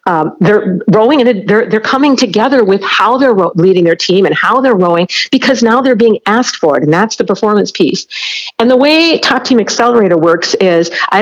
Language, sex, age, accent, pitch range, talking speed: English, female, 50-69, American, 190-250 Hz, 215 wpm